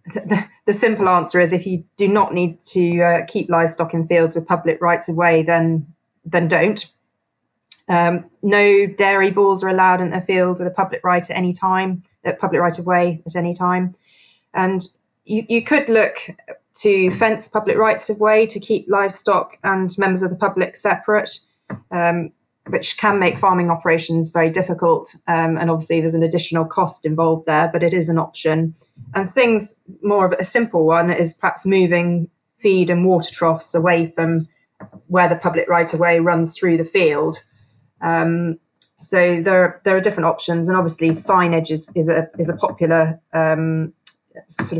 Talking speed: 170 wpm